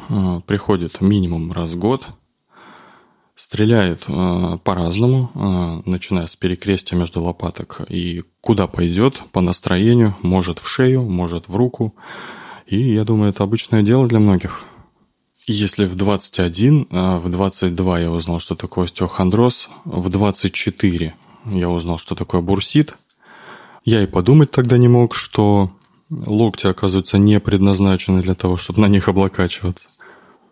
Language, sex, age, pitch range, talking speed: Russian, male, 20-39, 90-110 Hz, 130 wpm